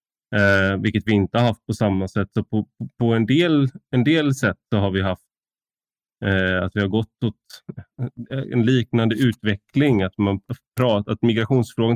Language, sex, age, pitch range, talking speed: Swedish, male, 20-39, 100-120 Hz, 180 wpm